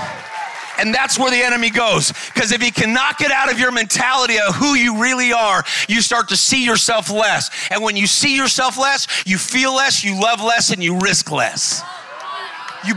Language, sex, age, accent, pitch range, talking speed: English, male, 40-59, American, 195-260 Hz, 200 wpm